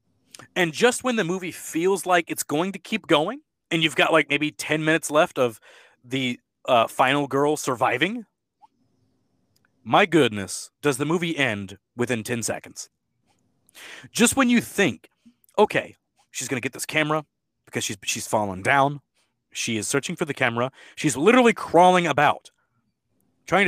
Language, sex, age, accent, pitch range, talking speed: English, male, 30-49, American, 125-180 Hz, 155 wpm